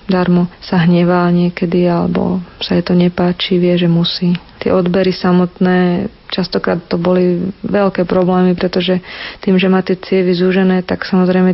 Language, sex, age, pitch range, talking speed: Slovak, female, 40-59, 180-190 Hz, 150 wpm